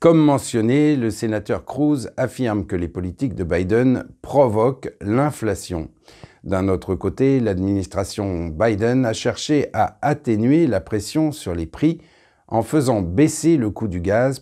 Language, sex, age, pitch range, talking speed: French, male, 50-69, 95-130 Hz, 140 wpm